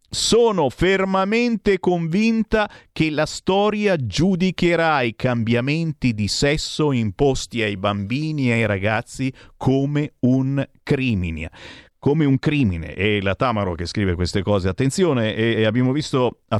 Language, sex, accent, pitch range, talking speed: Italian, male, native, 100-145 Hz, 125 wpm